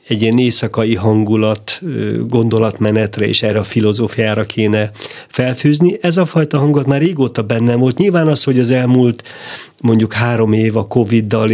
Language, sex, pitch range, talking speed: Hungarian, male, 110-130 Hz, 150 wpm